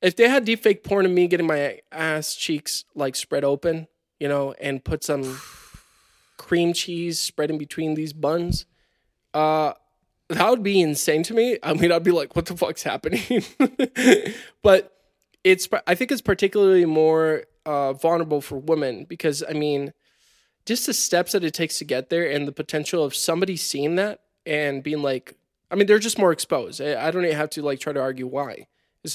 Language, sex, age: English, male, 20-39